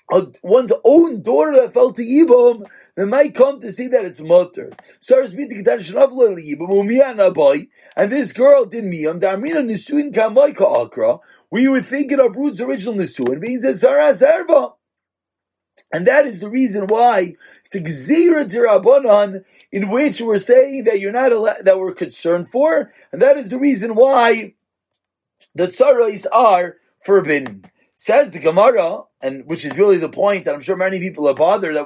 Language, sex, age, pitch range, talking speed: English, male, 40-59, 215-305 Hz, 160 wpm